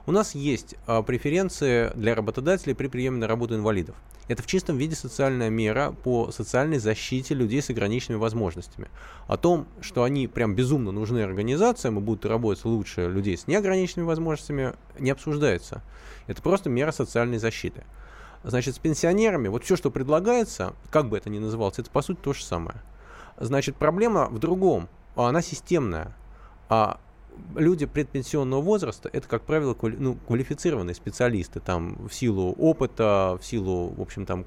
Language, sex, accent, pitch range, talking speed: Russian, male, native, 110-150 Hz, 150 wpm